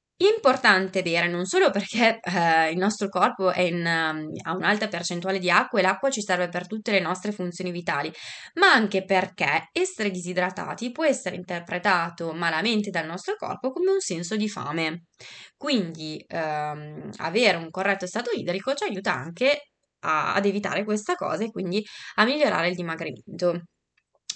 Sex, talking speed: female, 160 wpm